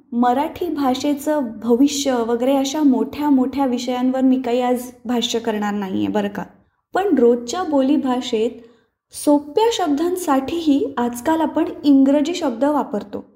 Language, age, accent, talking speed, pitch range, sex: Marathi, 20-39, native, 120 wpm, 250-315 Hz, female